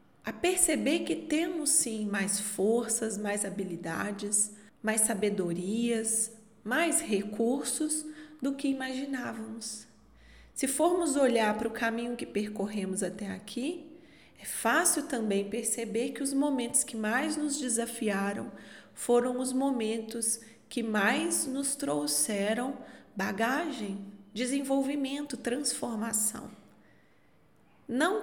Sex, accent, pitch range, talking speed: female, Brazilian, 210-280 Hz, 100 wpm